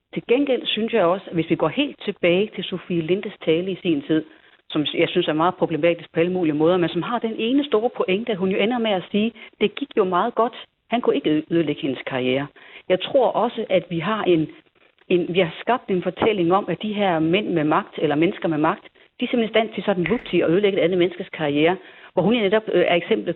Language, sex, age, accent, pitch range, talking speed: Danish, female, 40-59, native, 170-220 Hz, 245 wpm